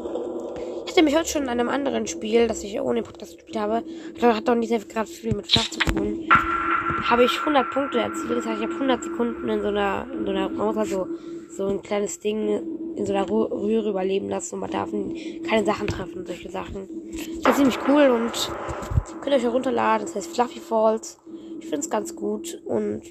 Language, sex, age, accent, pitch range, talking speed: German, female, 20-39, German, 225-335 Hz, 215 wpm